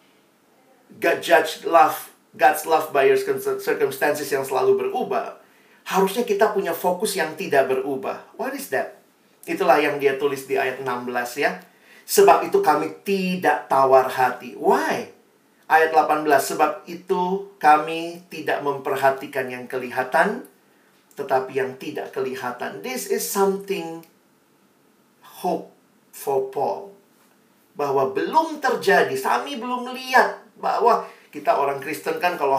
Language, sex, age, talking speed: Indonesian, male, 40-59, 125 wpm